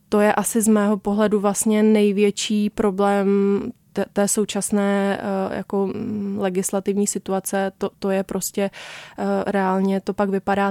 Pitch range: 190-205 Hz